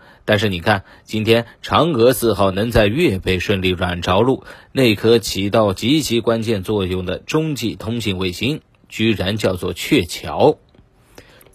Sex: male